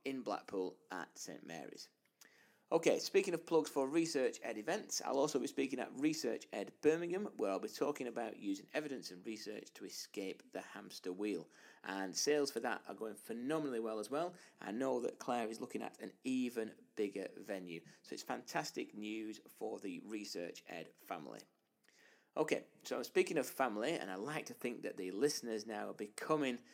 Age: 30-49